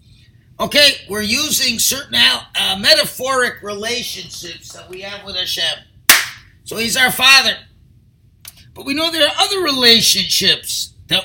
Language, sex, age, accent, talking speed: English, male, 50-69, American, 130 wpm